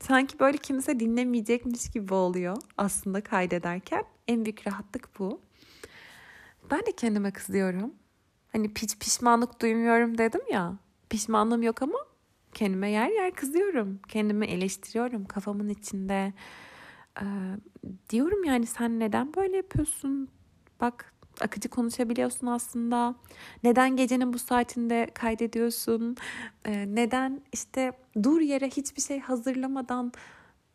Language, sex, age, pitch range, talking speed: Turkish, female, 30-49, 210-265 Hz, 110 wpm